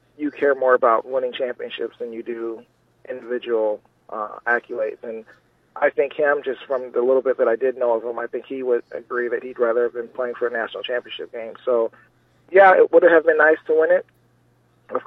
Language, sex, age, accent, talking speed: English, male, 30-49, American, 215 wpm